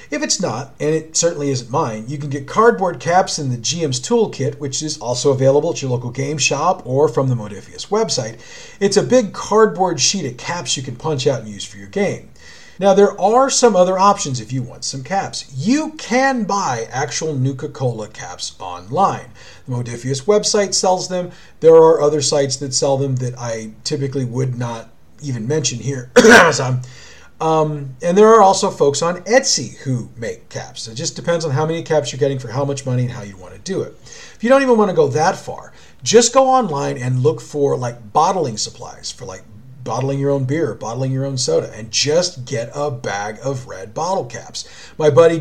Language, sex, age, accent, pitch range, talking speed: English, male, 40-59, American, 130-185 Hz, 205 wpm